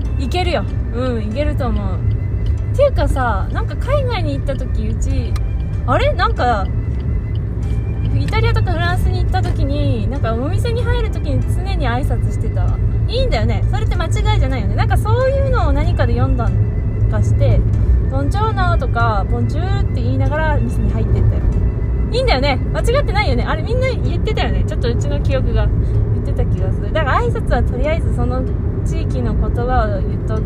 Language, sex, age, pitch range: Japanese, female, 20-39, 95-110 Hz